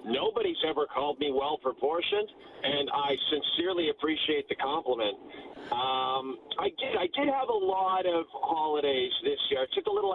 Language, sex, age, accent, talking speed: English, male, 40-59, American, 160 wpm